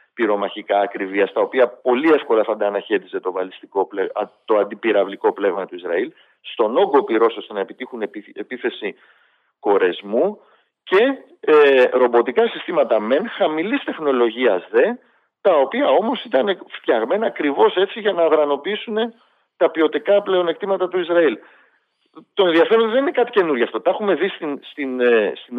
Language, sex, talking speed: Greek, male, 135 wpm